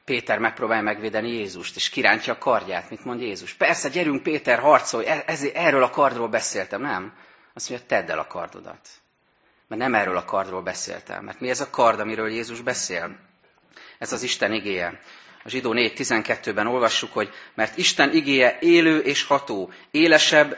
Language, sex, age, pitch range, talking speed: Hungarian, male, 30-49, 110-145 Hz, 165 wpm